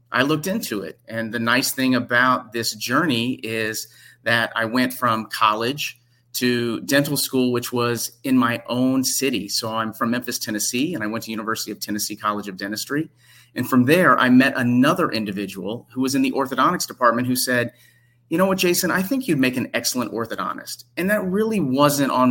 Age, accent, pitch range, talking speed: 30-49, American, 115-135 Hz, 195 wpm